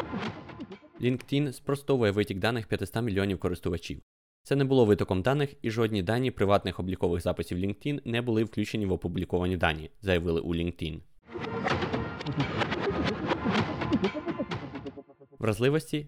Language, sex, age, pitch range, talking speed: Ukrainian, male, 20-39, 95-125 Hz, 110 wpm